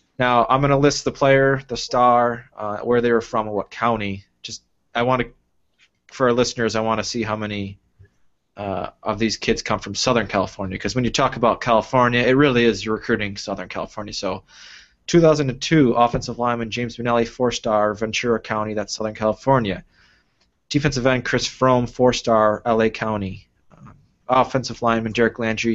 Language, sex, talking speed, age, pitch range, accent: English, male, 175 wpm, 20-39, 105-125 Hz, American